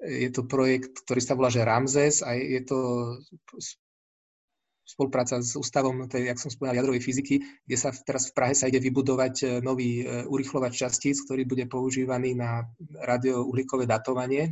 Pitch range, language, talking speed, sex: 125-140 Hz, Slovak, 150 wpm, male